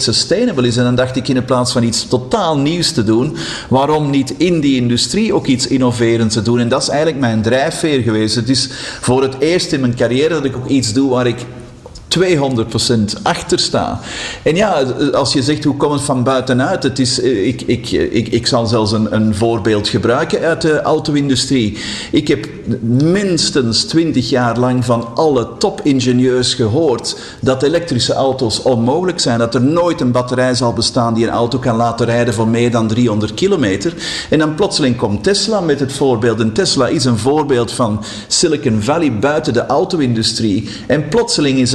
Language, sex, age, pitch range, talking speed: Dutch, male, 50-69, 120-145 Hz, 185 wpm